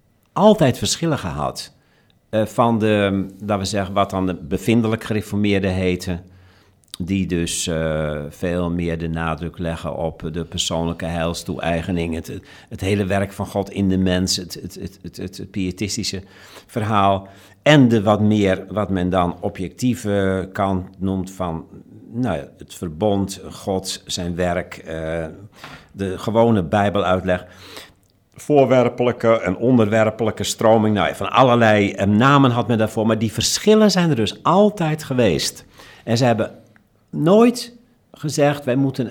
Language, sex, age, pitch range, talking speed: Dutch, male, 50-69, 90-120 Hz, 140 wpm